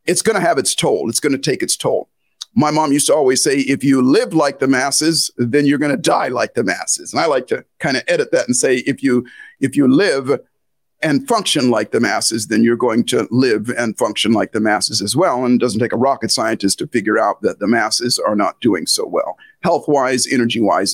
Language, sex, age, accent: English, male, 50-69, American